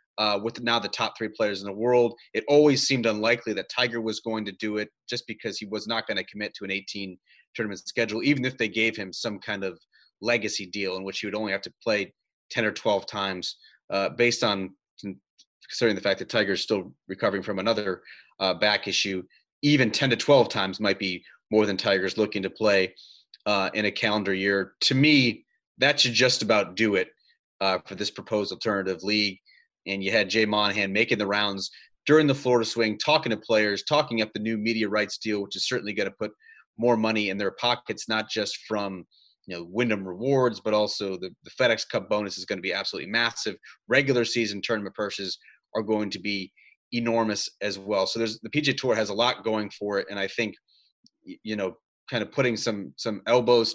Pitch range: 100-115 Hz